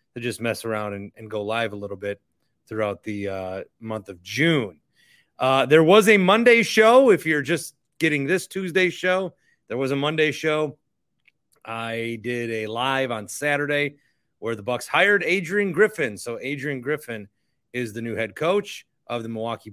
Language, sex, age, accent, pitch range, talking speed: English, male, 30-49, American, 120-170 Hz, 175 wpm